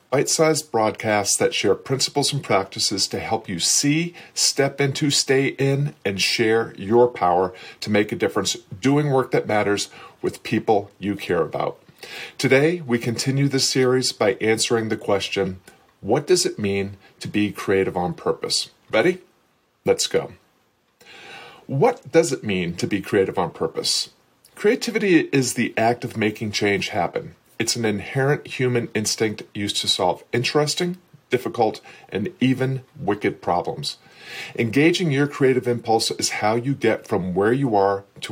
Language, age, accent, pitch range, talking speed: English, 40-59, American, 105-140 Hz, 150 wpm